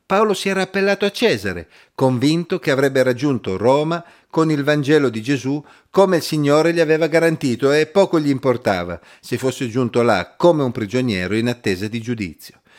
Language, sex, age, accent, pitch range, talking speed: Italian, male, 50-69, native, 115-165 Hz, 175 wpm